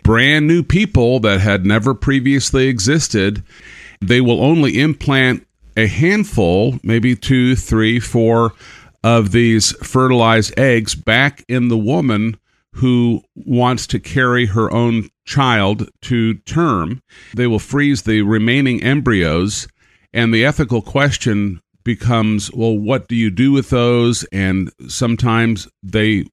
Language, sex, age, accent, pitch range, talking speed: English, male, 50-69, American, 105-125 Hz, 130 wpm